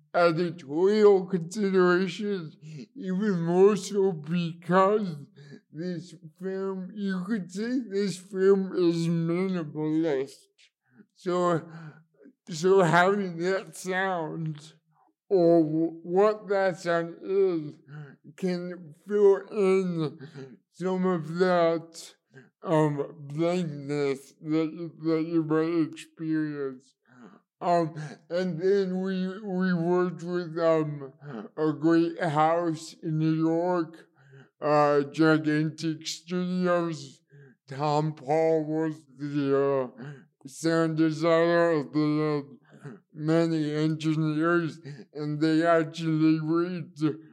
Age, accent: 60-79, American